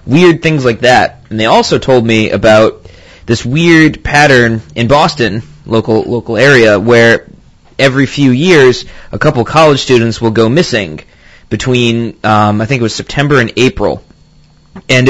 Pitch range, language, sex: 110-135 Hz, English, male